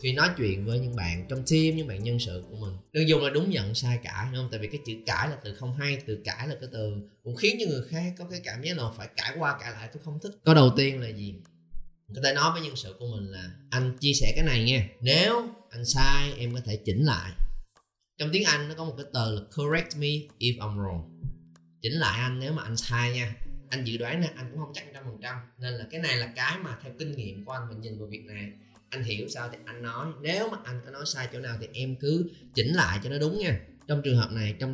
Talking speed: 275 wpm